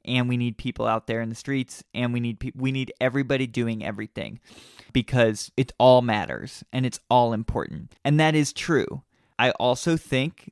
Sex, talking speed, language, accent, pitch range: male, 185 wpm, English, American, 120-140 Hz